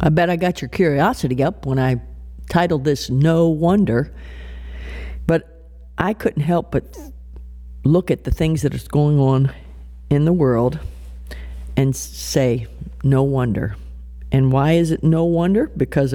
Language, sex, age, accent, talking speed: English, female, 50-69, American, 150 wpm